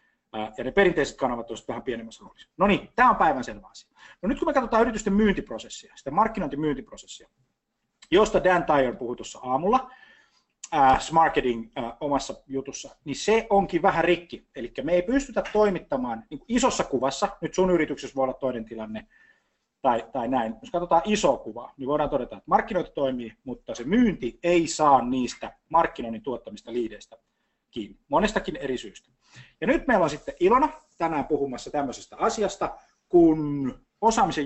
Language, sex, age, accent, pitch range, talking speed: Finnish, male, 30-49, native, 125-195 Hz, 150 wpm